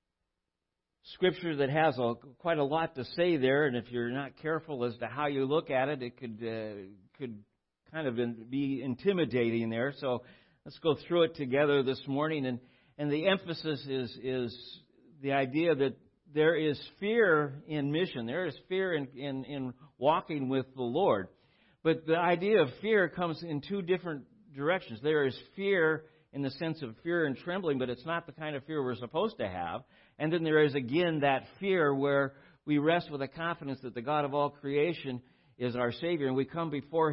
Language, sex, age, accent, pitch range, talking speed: English, male, 50-69, American, 125-160 Hz, 195 wpm